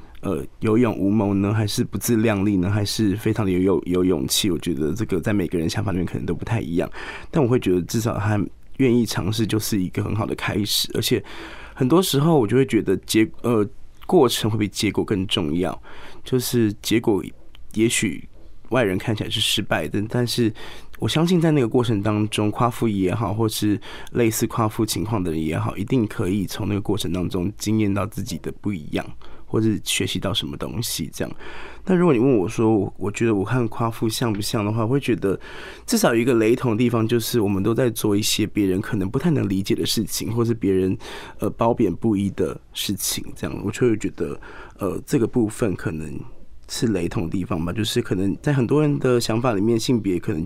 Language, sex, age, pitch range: Chinese, male, 20-39, 100-120 Hz